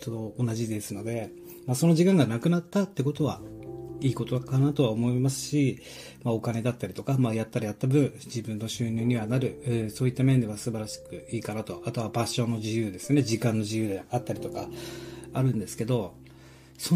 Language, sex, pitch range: Japanese, male, 105-140 Hz